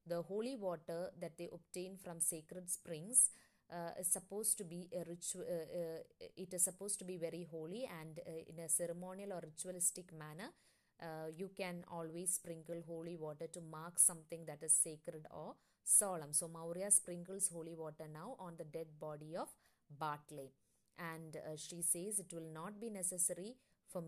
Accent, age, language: Indian, 20-39, English